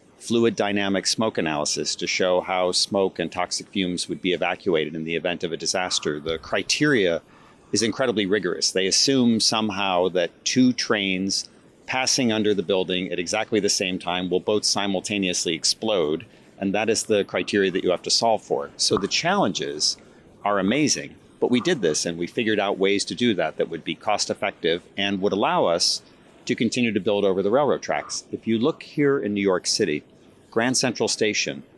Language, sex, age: English, male, 40-59